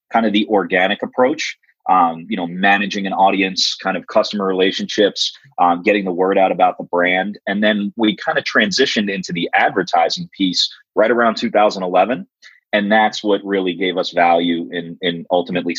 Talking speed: 175 wpm